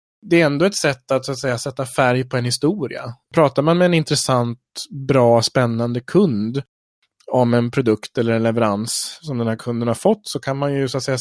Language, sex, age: Swedish, male, 30-49